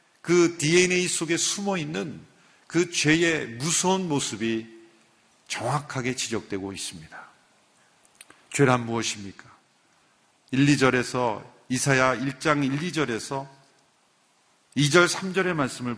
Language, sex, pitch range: Korean, male, 120-165 Hz